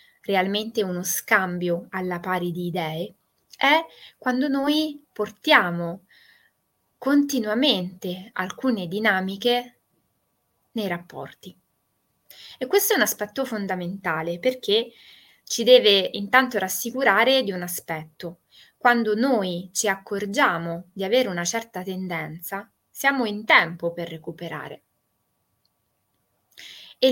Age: 20-39